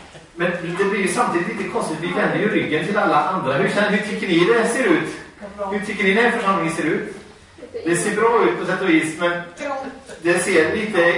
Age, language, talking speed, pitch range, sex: 30-49, Swedish, 220 wpm, 170-230 Hz, male